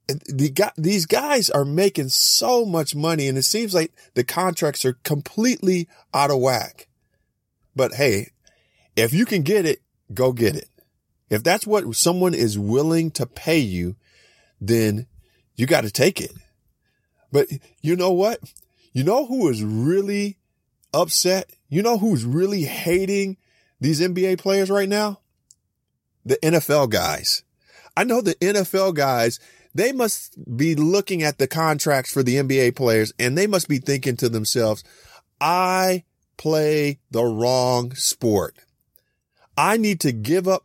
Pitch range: 125-180 Hz